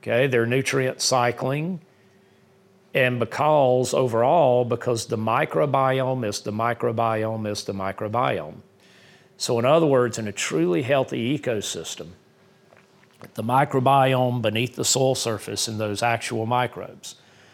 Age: 40-59